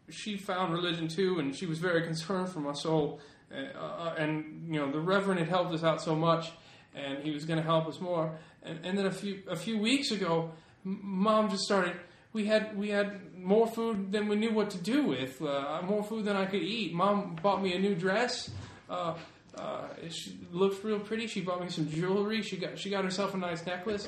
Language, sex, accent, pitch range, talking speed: English, male, American, 170-220 Hz, 225 wpm